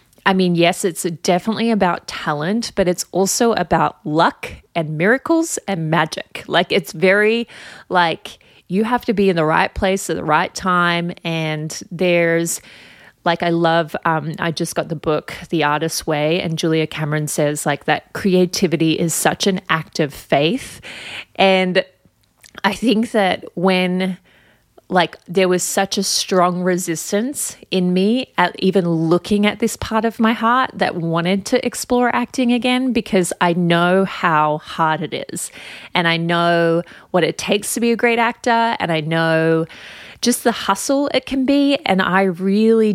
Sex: female